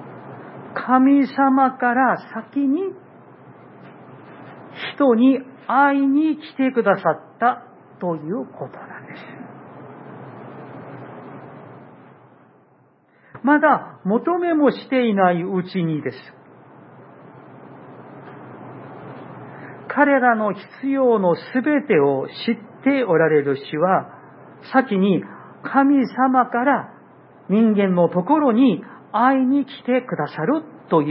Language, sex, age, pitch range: Japanese, male, 50-69, 180-270 Hz